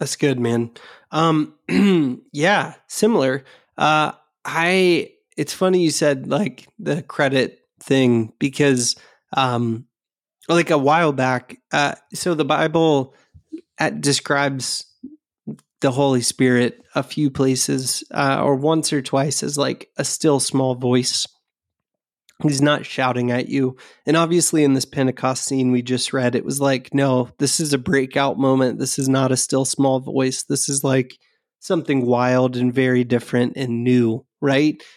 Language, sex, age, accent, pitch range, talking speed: English, male, 30-49, American, 125-150 Hz, 145 wpm